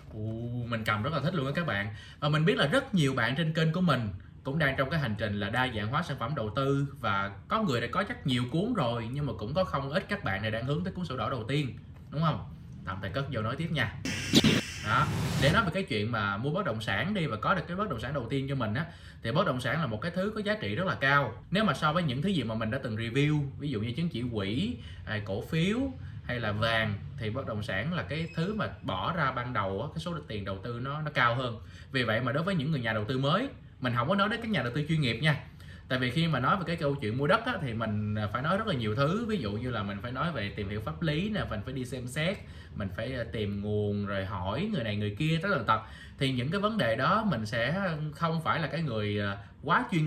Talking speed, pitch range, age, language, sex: 290 wpm, 110-160 Hz, 20-39, Vietnamese, male